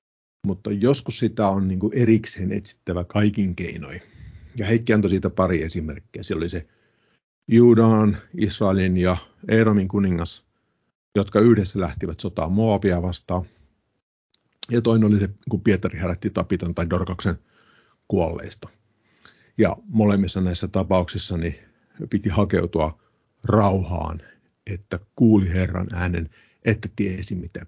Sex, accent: male, native